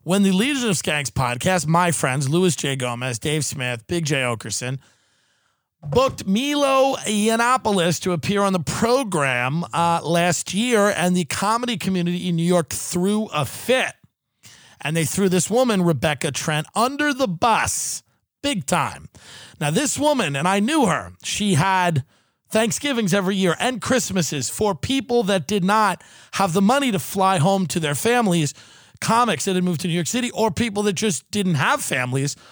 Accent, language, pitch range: American, English, 160-215 Hz